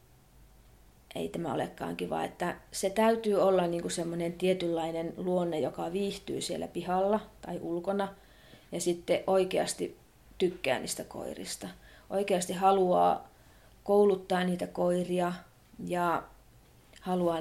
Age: 30-49